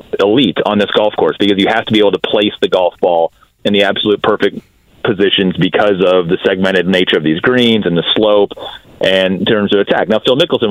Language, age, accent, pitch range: English, 30-49, American, 100-125 Hz